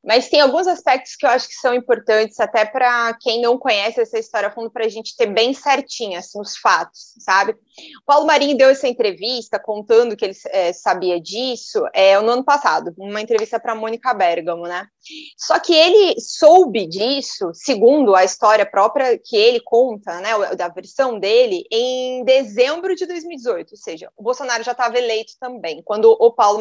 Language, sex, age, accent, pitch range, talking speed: Portuguese, female, 20-39, Brazilian, 215-275 Hz, 185 wpm